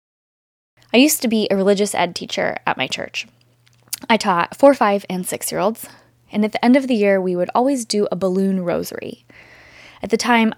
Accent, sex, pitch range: American, female, 185-225 Hz